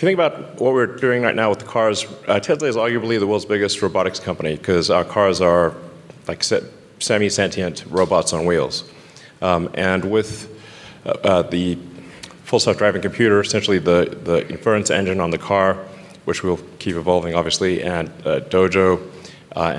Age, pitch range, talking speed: 30-49, 85-110 Hz, 170 wpm